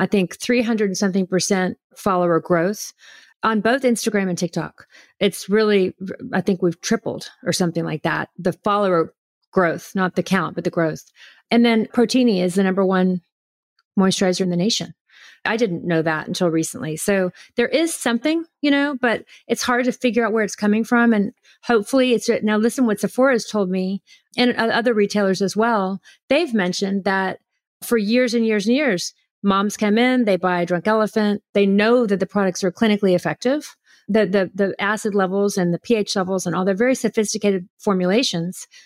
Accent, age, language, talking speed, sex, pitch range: American, 40-59, English, 185 wpm, female, 185-225 Hz